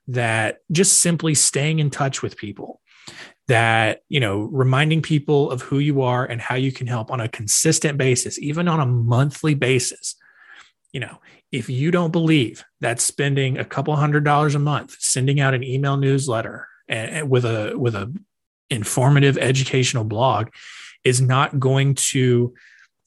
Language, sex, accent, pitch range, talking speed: English, male, American, 120-145 Hz, 165 wpm